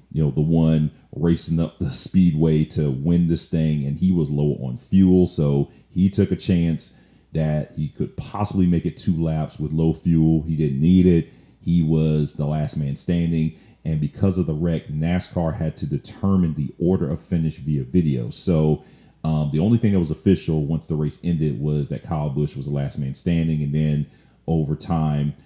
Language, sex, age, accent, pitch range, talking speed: English, male, 40-59, American, 75-90 Hz, 200 wpm